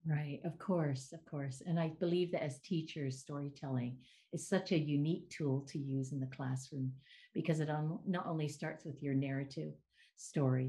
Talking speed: 175 wpm